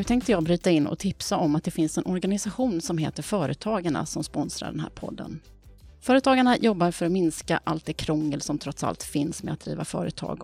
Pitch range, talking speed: 155-205 Hz, 215 wpm